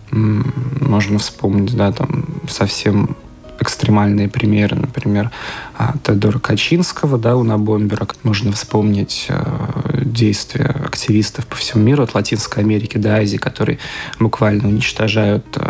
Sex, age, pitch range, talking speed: male, 20-39, 110-135 Hz, 105 wpm